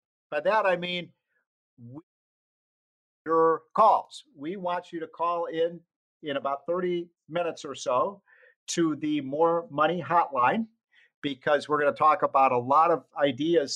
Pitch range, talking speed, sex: 140-190 Hz, 145 wpm, male